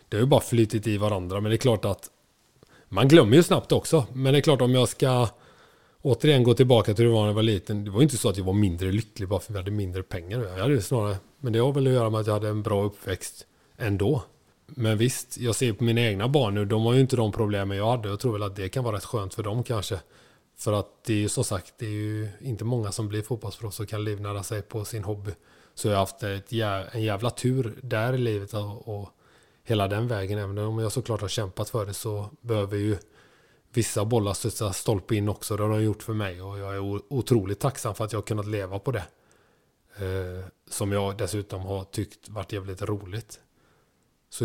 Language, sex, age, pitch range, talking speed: Swedish, male, 20-39, 100-120 Hz, 240 wpm